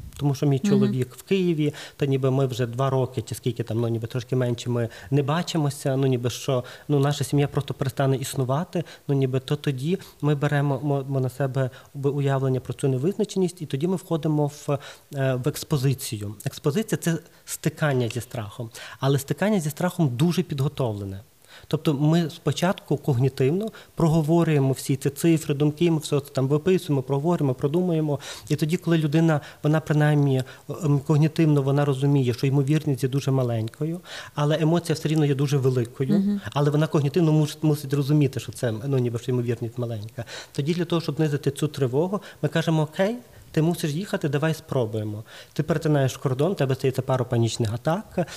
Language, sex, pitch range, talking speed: Ukrainian, male, 130-160 Hz, 165 wpm